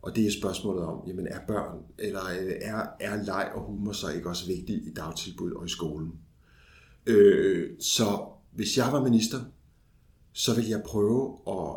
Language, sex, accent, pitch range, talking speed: Danish, male, native, 105-125 Hz, 175 wpm